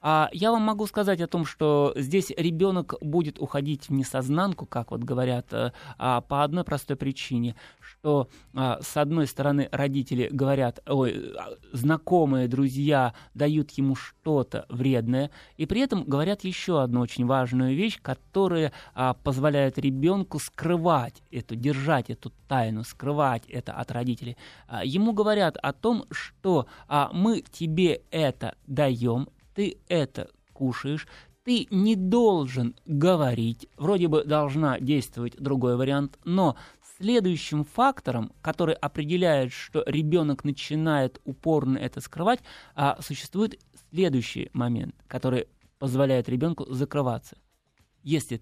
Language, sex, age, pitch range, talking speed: Russian, male, 20-39, 130-165 Hz, 120 wpm